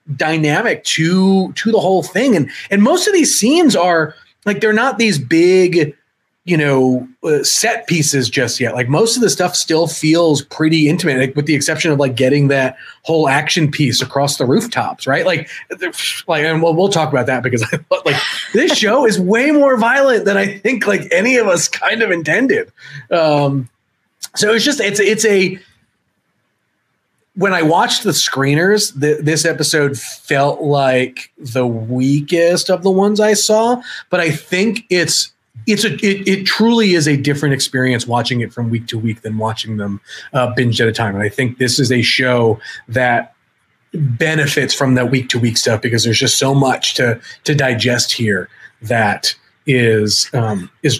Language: English